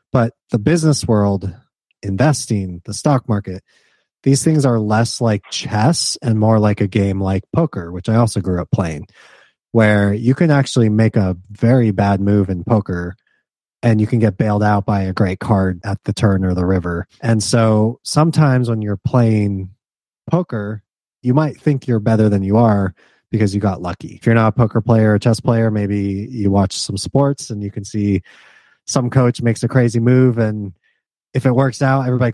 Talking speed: 190 wpm